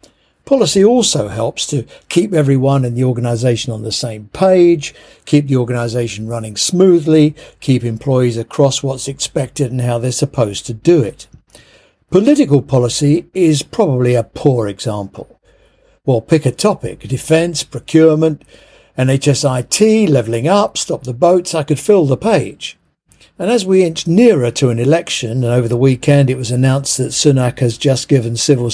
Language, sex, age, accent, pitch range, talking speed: English, male, 60-79, British, 120-165 Hz, 160 wpm